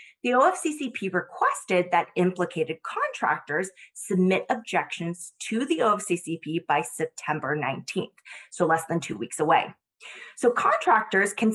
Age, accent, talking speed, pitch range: 20-39, American, 120 wpm, 170-220 Hz